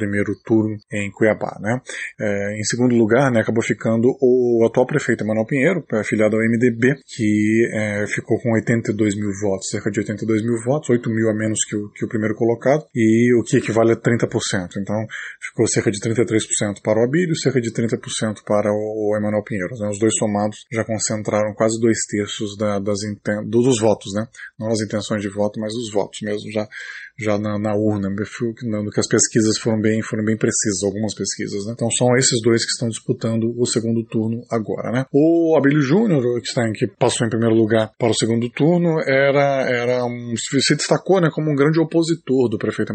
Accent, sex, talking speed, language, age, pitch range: Brazilian, male, 195 wpm, Portuguese, 20-39, 105-125 Hz